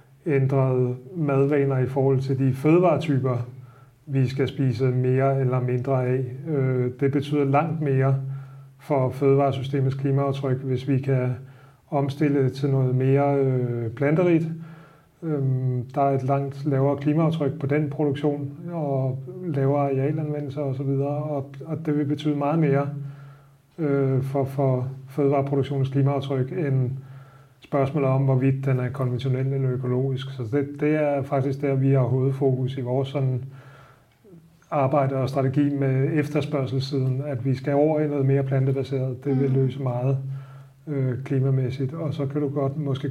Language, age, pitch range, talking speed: Danish, 30-49, 130-140 Hz, 140 wpm